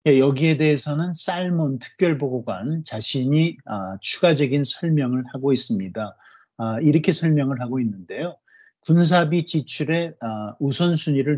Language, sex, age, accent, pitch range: Korean, male, 40-59, native, 125-160 Hz